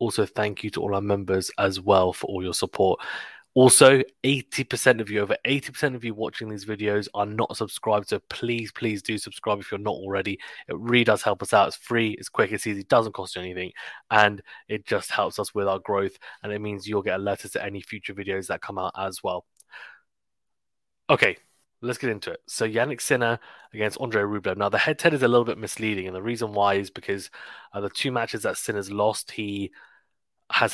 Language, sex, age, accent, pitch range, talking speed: English, male, 20-39, British, 100-115 Hz, 215 wpm